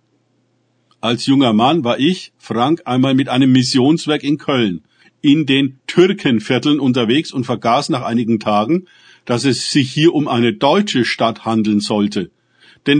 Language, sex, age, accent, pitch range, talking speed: German, male, 50-69, German, 120-155 Hz, 150 wpm